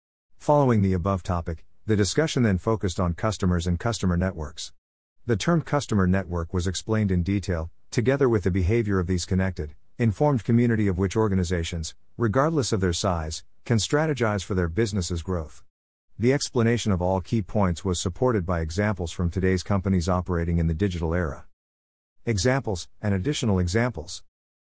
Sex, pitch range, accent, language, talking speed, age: male, 90-115 Hz, American, English, 160 wpm, 50-69